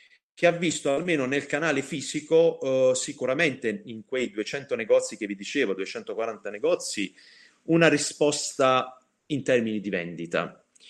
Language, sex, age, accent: Italian, male, 40-59, native